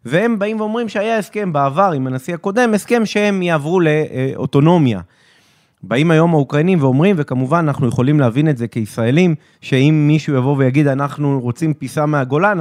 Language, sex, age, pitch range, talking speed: Hebrew, male, 30-49, 130-190 Hz, 150 wpm